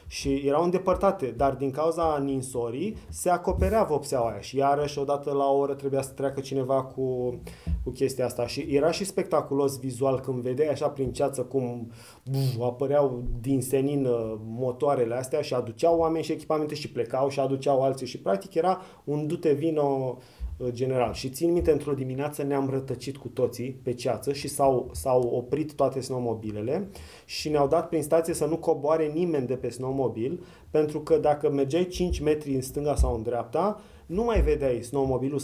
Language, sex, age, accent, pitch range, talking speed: Romanian, male, 20-39, native, 130-155 Hz, 175 wpm